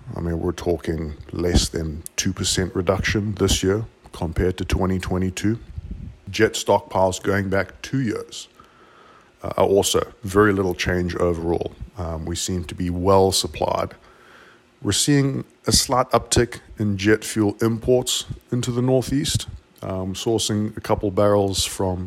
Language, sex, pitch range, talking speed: English, male, 85-100 Hz, 140 wpm